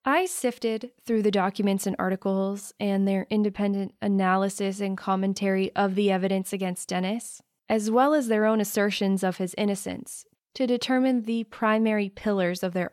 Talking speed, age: 160 wpm, 20-39